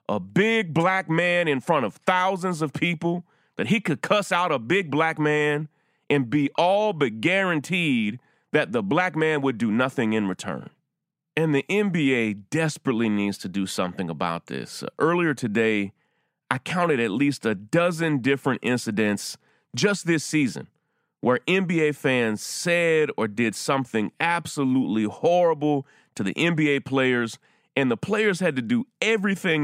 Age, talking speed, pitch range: 30-49, 155 wpm, 135-180 Hz